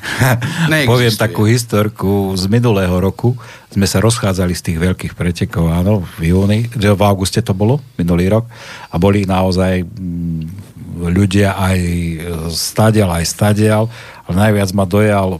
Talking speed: 125 wpm